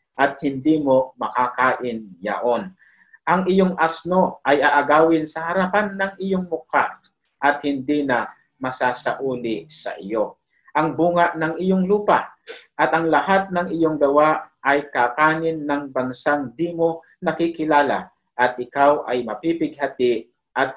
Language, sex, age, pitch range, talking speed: Filipino, male, 50-69, 125-160 Hz, 125 wpm